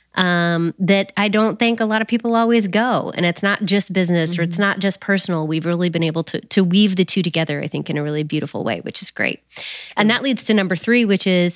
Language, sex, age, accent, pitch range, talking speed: English, female, 20-39, American, 175-220 Hz, 255 wpm